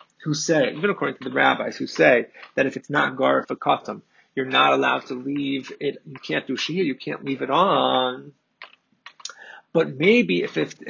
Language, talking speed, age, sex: English, 185 wpm, 30-49, male